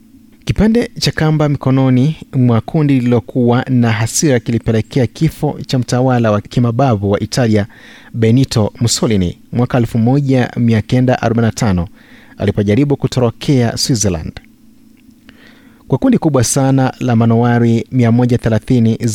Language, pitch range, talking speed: Swahili, 115-150 Hz, 90 wpm